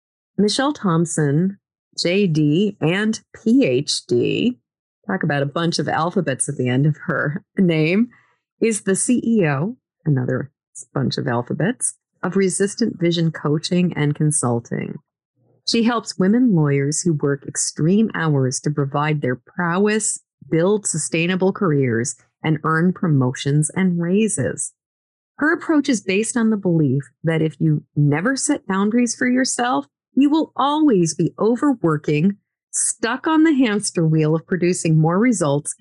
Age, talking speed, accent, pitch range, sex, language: 30-49, 130 wpm, American, 150-220 Hz, female, English